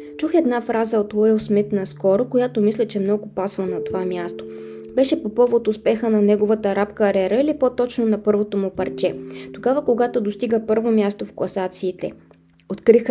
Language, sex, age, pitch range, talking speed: Bulgarian, female, 20-39, 185-220 Hz, 170 wpm